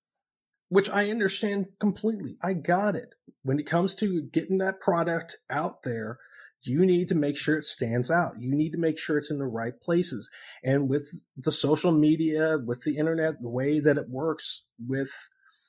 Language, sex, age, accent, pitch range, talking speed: English, male, 30-49, American, 125-160 Hz, 185 wpm